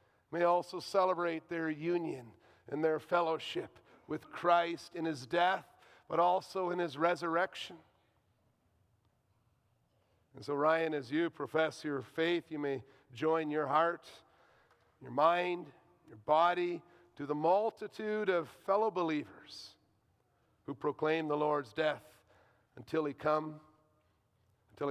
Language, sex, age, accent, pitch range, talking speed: English, male, 50-69, American, 130-165 Hz, 120 wpm